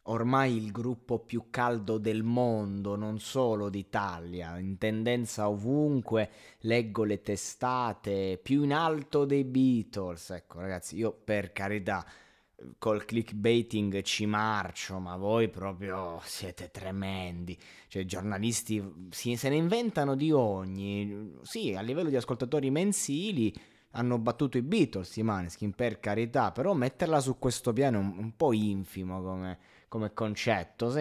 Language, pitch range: Italian, 100-130 Hz